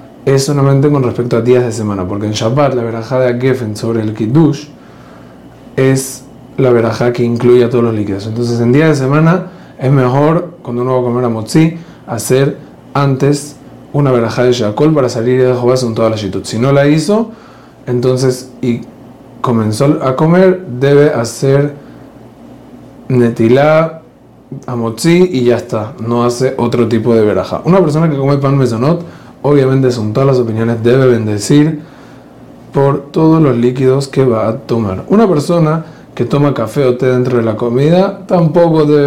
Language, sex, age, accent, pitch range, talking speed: Spanish, male, 30-49, Argentinian, 120-145 Hz, 175 wpm